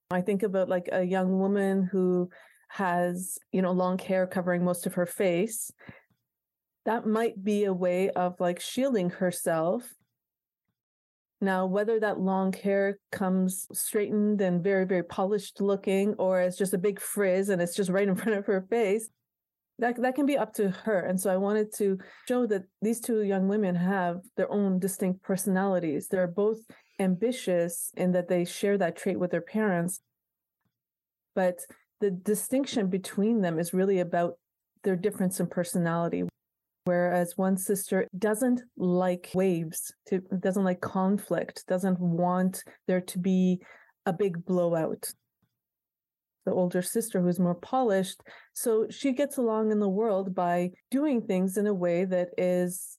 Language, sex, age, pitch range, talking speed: English, female, 30-49, 180-205 Hz, 155 wpm